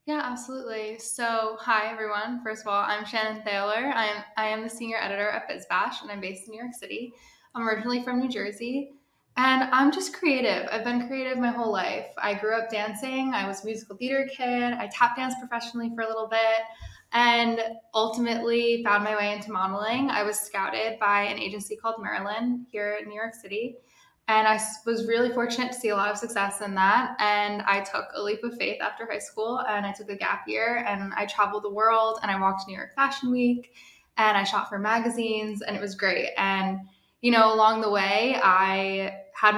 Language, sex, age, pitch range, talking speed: English, female, 10-29, 200-235 Hz, 210 wpm